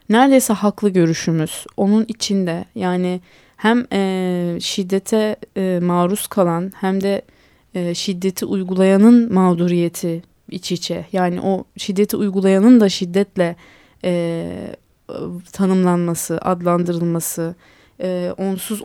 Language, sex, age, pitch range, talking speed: Turkish, female, 20-39, 175-210 Hz, 85 wpm